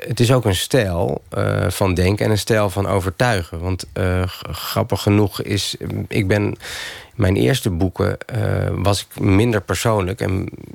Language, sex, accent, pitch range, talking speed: Dutch, male, Dutch, 95-115 Hz, 175 wpm